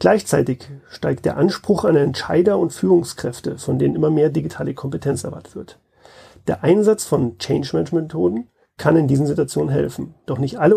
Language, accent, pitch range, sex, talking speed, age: German, German, 135-175 Hz, male, 155 wpm, 40-59